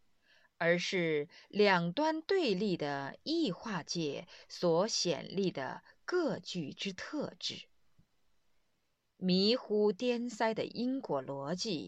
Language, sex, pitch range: Chinese, female, 155-230 Hz